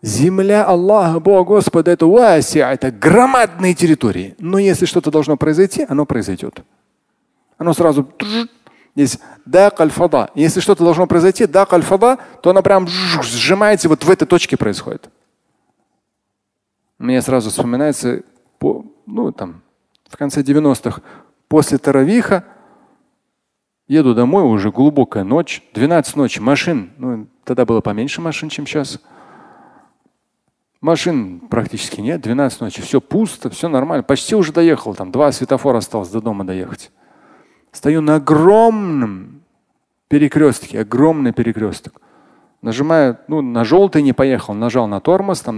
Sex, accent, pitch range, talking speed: male, native, 120-180 Hz, 125 wpm